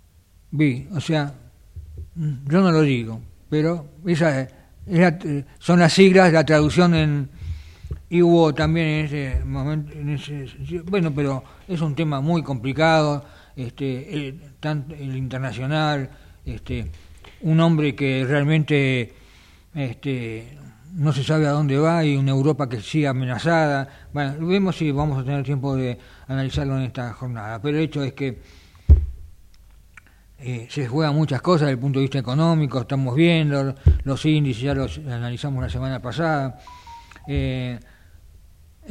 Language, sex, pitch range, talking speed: Italian, male, 95-155 Hz, 145 wpm